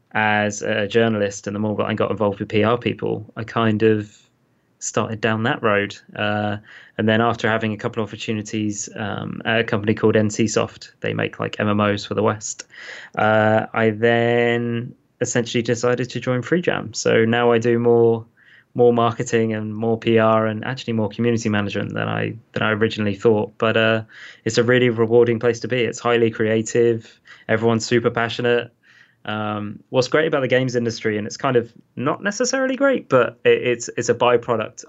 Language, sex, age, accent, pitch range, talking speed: English, male, 20-39, British, 105-120 Hz, 180 wpm